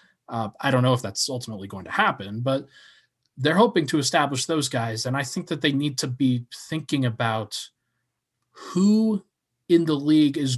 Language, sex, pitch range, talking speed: English, male, 125-155 Hz, 180 wpm